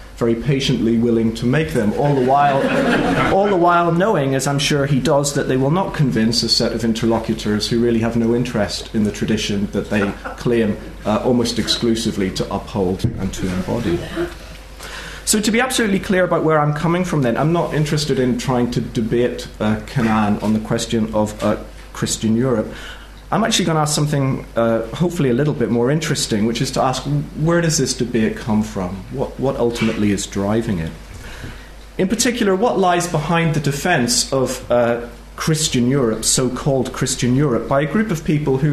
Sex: male